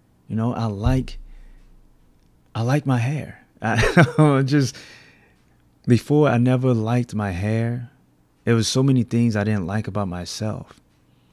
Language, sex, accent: English, male, American